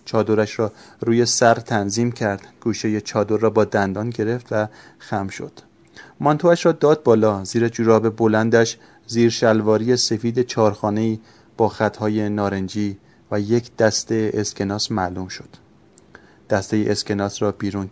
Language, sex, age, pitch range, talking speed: Persian, male, 30-49, 105-120 Hz, 135 wpm